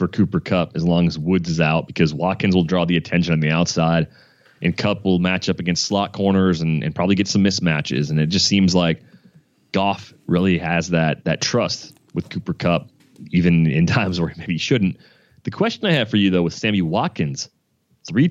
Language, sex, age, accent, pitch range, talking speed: English, male, 30-49, American, 85-120 Hz, 205 wpm